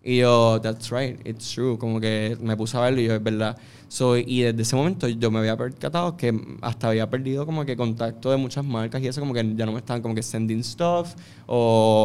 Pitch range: 115-135 Hz